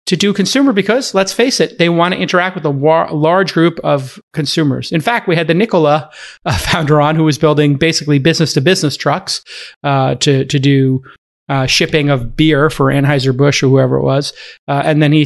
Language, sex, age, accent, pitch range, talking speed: English, male, 40-59, American, 145-180 Hz, 205 wpm